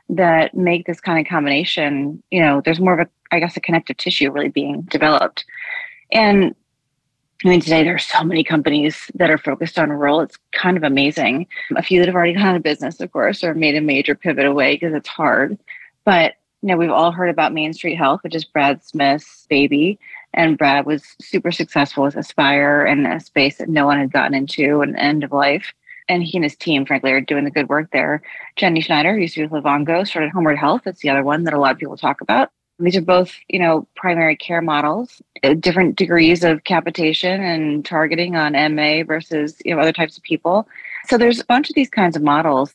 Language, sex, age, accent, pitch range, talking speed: English, female, 30-49, American, 145-180 Hz, 225 wpm